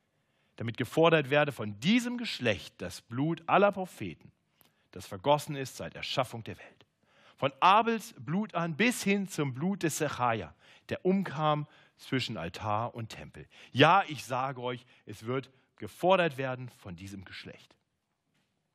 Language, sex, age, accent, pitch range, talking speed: German, male, 40-59, German, 130-185 Hz, 140 wpm